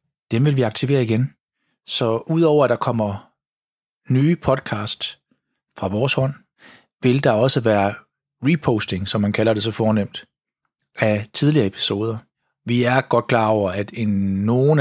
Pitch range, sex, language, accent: 100-120 Hz, male, Danish, native